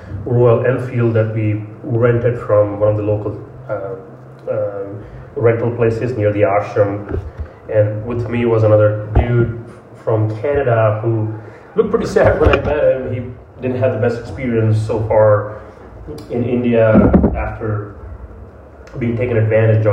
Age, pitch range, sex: 30-49, 105-115 Hz, male